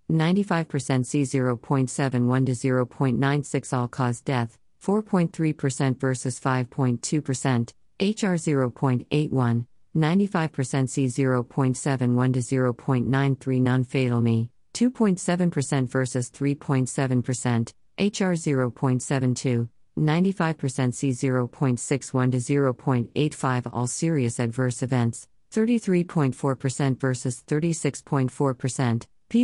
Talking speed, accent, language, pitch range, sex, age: 80 wpm, American, English, 125-150 Hz, female, 40-59